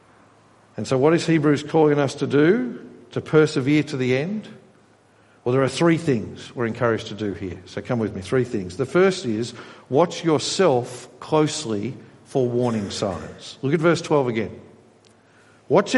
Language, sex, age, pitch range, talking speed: English, male, 50-69, 115-150 Hz, 170 wpm